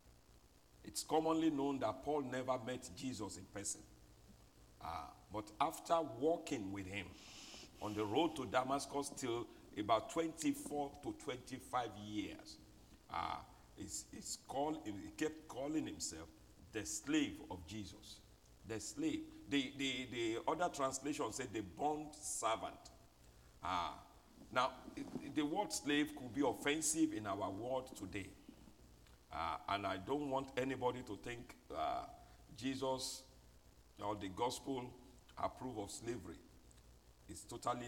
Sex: male